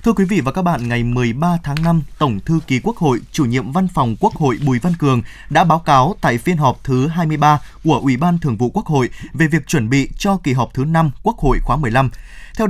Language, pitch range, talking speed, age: Vietnamese, 135-180 Hz, 250 wpm, 20-39